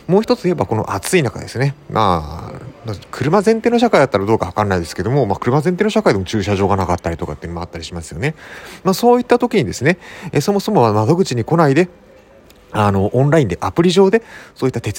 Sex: male